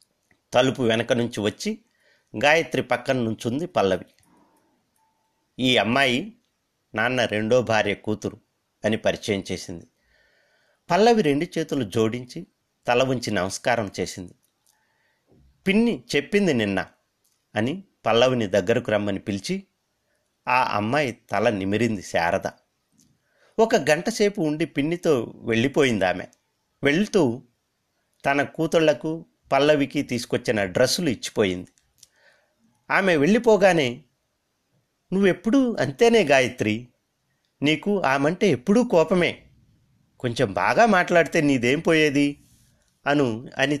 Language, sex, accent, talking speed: Telugu, male, native, 95 wpm